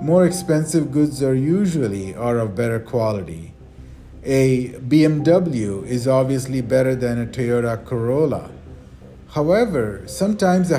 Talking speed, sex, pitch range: 115 wpm, male, 100-155 Hz